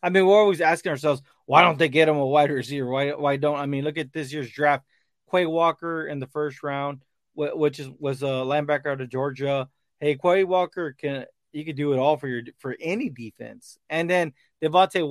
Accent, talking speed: American, 220 wpm